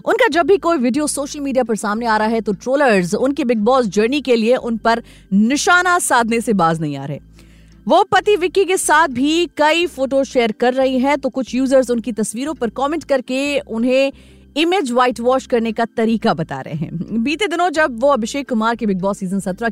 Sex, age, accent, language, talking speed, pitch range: female, 30-49, native, Hindi, 155 wpm, 215-290 Hz